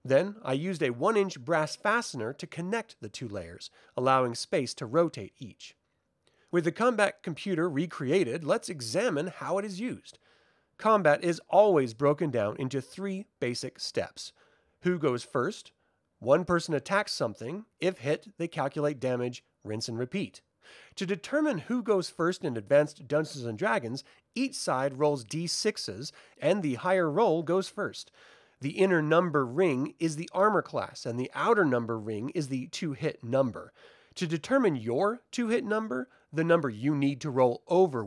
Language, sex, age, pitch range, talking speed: English, male, 30-49, 135-195 Hz, 160 wpm